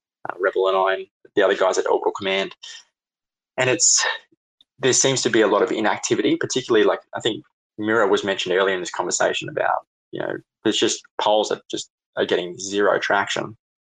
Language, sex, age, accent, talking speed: English, male, 20-39, Australian, 190 wpm